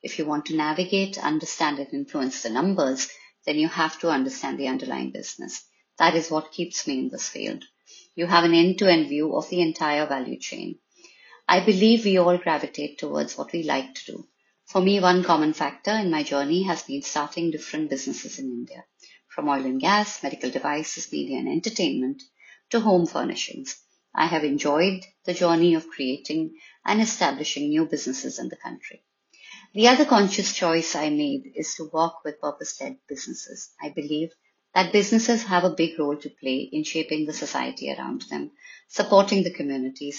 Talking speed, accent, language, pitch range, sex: 180 wpm, Indian, English, 150-195 Hz, female